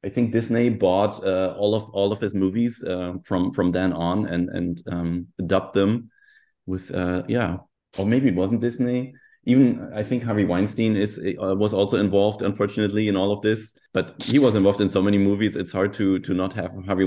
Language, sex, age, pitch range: English, male, 30-49, 90-115 Hz